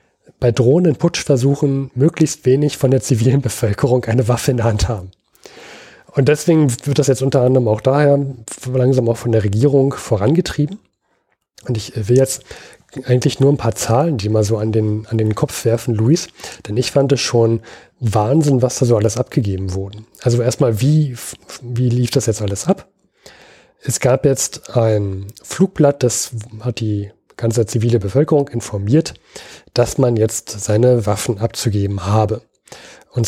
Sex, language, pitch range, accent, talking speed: male, German, 110-140 Hz, German, 160 wpm